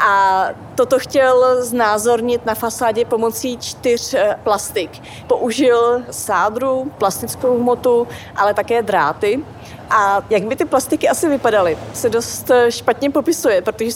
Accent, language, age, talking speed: native, Czech, 30-49, 120 wpm